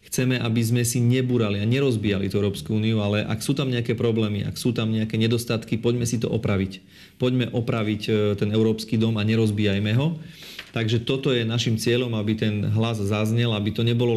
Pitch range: 105-120 Hz